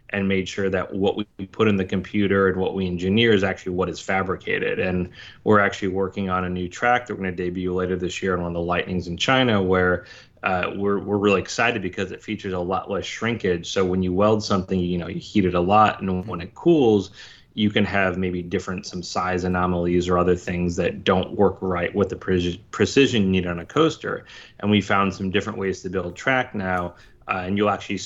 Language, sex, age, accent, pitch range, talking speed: English, male, 30-49, American, 90-105 Hz, 230 wpm